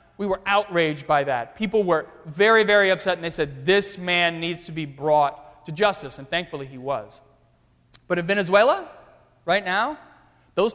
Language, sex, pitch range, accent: English, male, 155-210 Hz, American